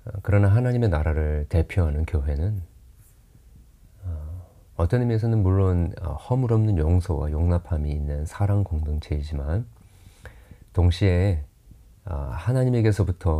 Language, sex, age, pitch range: Korean, male, 40-59, 80-105 Hz